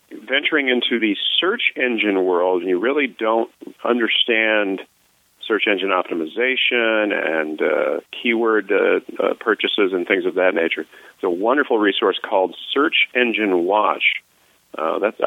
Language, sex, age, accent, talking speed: English, male, 40-59, American, 140 wpm